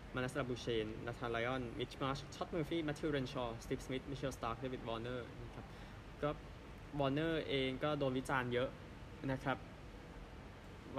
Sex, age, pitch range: male, 20-39, 110-135 Hz